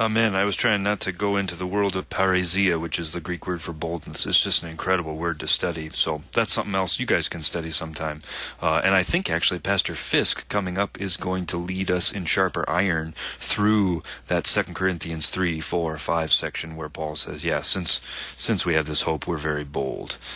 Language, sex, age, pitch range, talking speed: English, male, 30-49, 80-110 Hz, 220 wpm